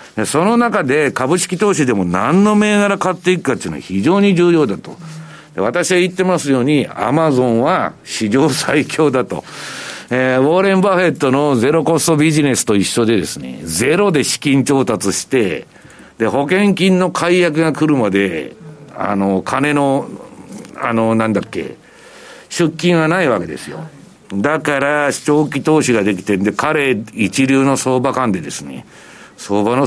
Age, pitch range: 60-79, 130-200 Hz